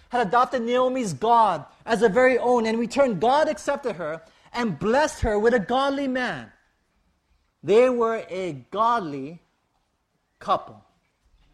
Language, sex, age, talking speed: English, male, 30-49, 135 wpm